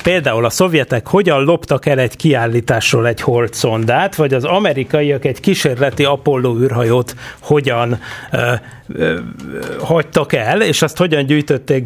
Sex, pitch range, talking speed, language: male, 120-150 Hz, 120 wpm, Hungarian